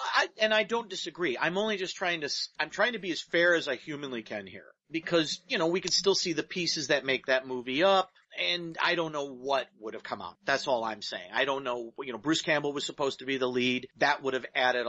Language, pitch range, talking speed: English, 125-160 Hz, 260 wpm